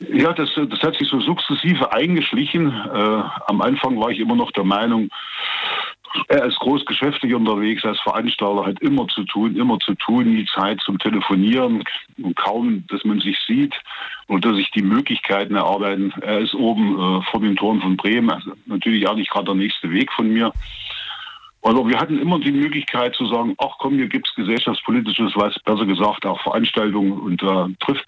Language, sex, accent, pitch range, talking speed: German, male, German, 100-160 Hz, 185 wpm